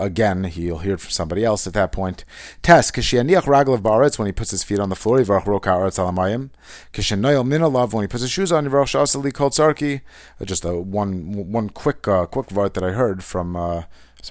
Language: English